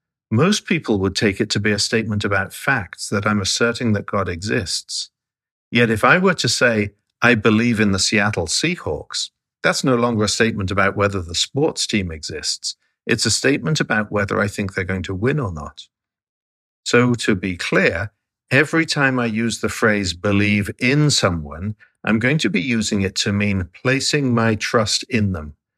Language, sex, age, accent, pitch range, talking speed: English, male, 50-69, British, 100-125 Hz, 185 wpm